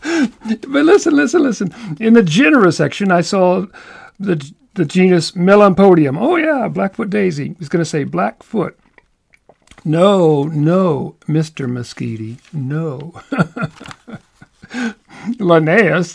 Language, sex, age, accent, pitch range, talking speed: English, male, 50-69, American, 160-230 Hz, 110 wpm